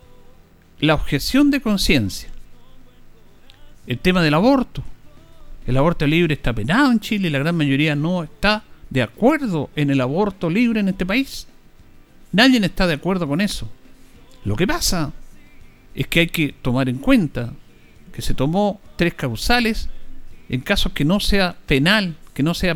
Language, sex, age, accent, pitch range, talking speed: Spanish, male, 50-69, Argentinian, 120-180 Hz, 155 wpm